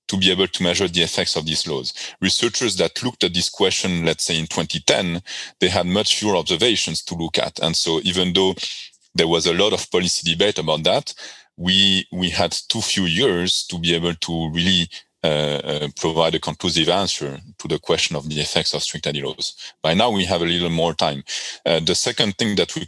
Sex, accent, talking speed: male, French, 210 wpm